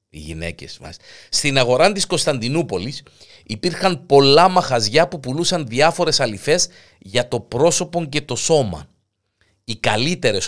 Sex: male